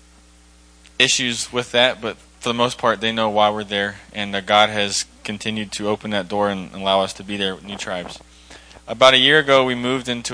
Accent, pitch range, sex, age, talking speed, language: American, 95-115 Hz, male, 20-39, 215 wpm, English